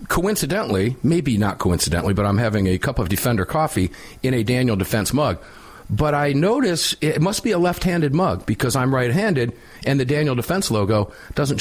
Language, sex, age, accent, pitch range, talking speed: English, male, 50-69, American, 105-150 Hz, 180 wpm